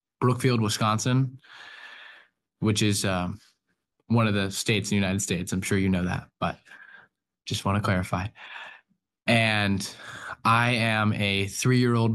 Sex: male